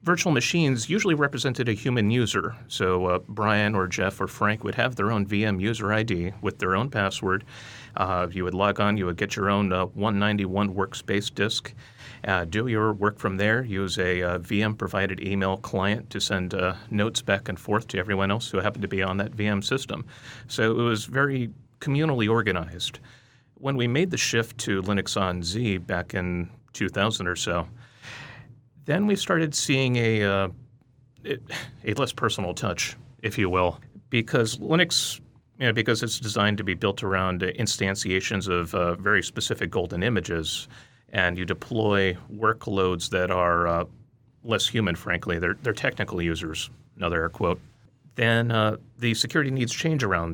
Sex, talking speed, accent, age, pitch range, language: male, 170 wpm, American, 30-49, 95-120 Hz, English